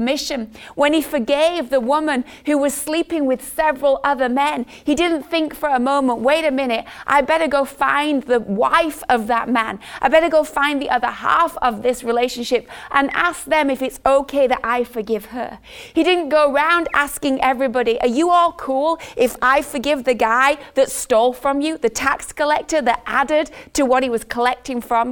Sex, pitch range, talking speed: female, 245-295 Hz, 195 wpm